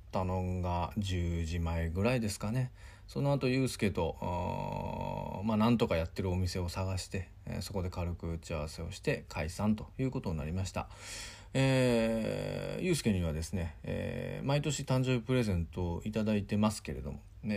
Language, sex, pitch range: Japanese, male, 90-115 Hz